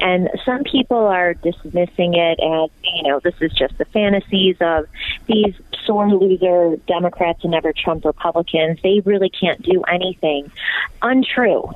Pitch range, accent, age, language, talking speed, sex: 165-200 Hz, American, 30-49, English, 150 wpm, female